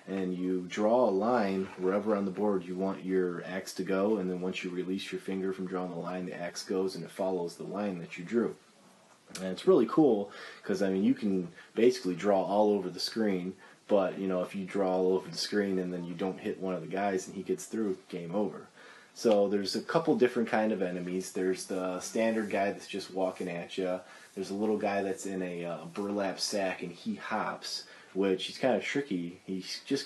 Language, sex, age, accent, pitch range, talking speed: English, male, 30-49, American, 90-100 Hz, 230 wpm